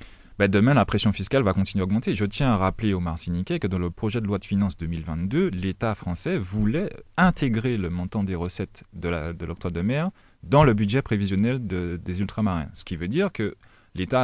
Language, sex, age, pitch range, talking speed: French, male, 30-49, 95-115 Hz, 215 wpm